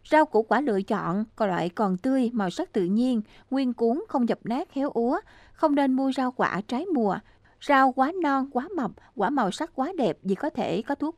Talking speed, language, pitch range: 225 wpm, Vietnamese, 200-270 Hz